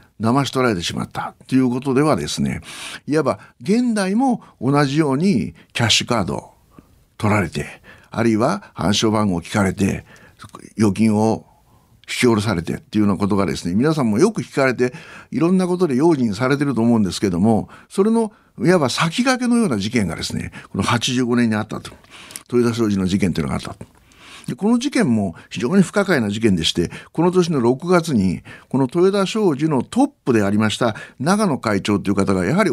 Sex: male